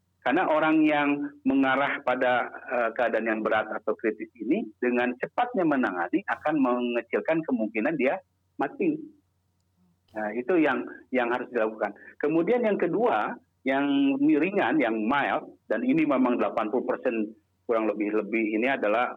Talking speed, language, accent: 130 wpm, Indonesian, native